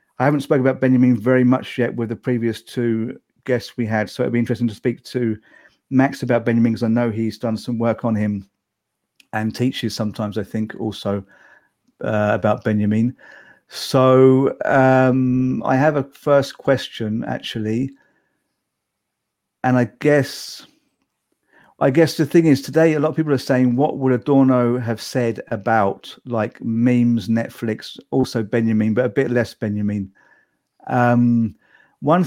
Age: 50-69